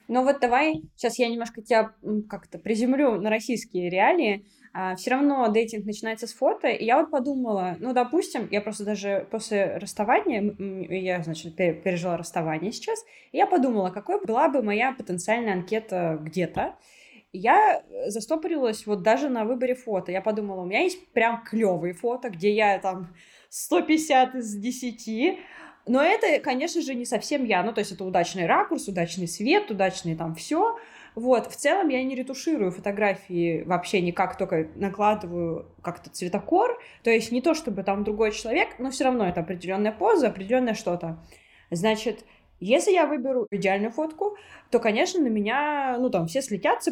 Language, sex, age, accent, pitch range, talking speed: Russian, female, 20-39, native, 190-270 Hz, 160 wpm